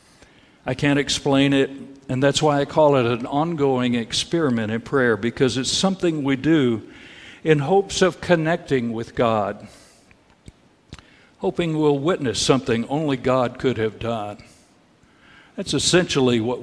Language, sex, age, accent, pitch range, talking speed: English, male, 60-79, American, 120-145 Hz, 135 wpm